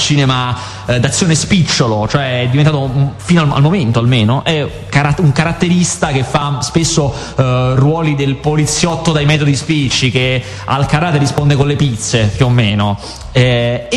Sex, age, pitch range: male, 30-49, 115-155 Hz